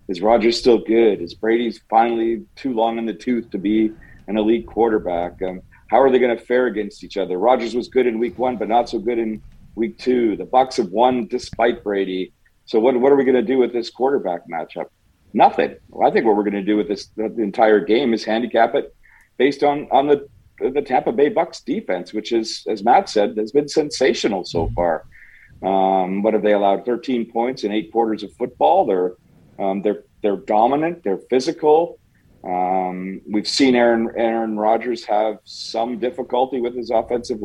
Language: English